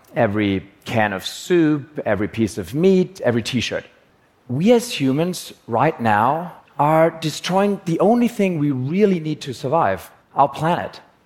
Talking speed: 145 wpm